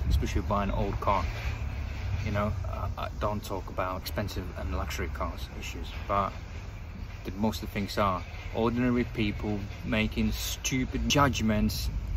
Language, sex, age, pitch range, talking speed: English, male, 30-49, 90-115 Hz, 130 wpm